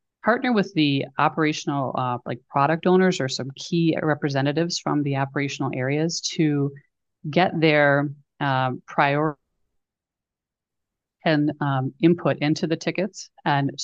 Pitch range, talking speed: 140-165 Hz, 120 wpm